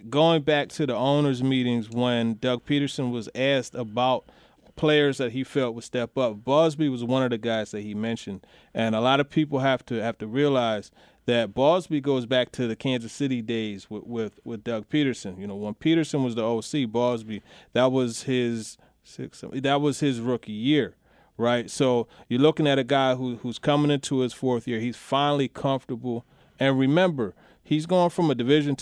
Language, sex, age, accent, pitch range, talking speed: English, male, 30-49, American, 120-140 Hz, 195 wpm